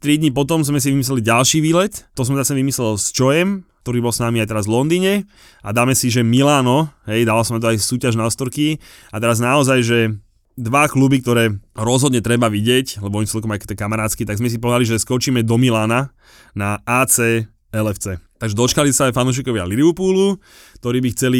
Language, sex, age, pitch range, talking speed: Slovak, male, 20-39, 110-130 Hz, 195 wpm